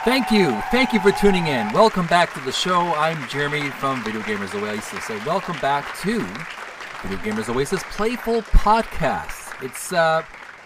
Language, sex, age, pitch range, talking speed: English, male, 40-59, 140-210 Hz, 165 wpm